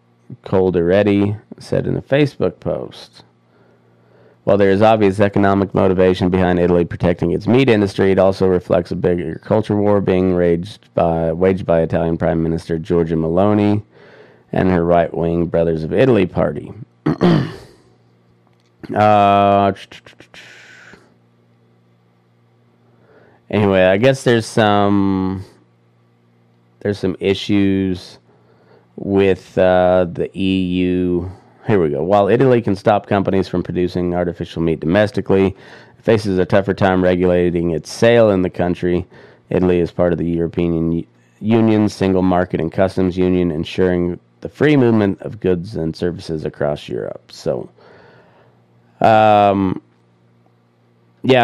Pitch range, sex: 80-100 Hz, male